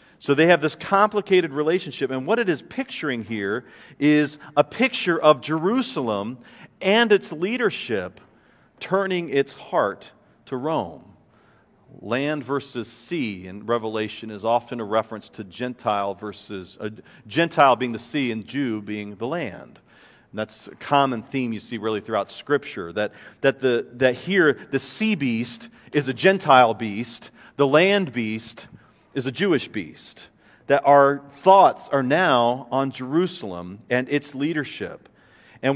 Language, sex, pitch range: English, male, 115-165 Hz